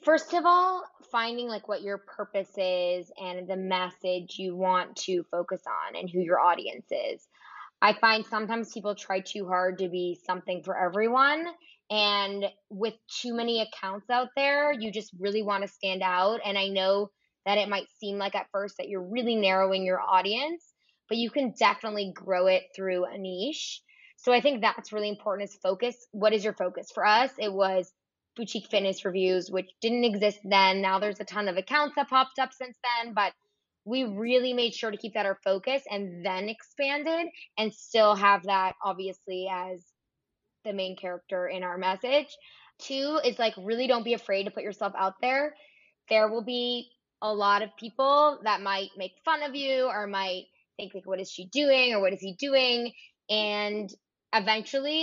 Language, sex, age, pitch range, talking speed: English, female, 20-39, 190-245 Hz, 190 wpm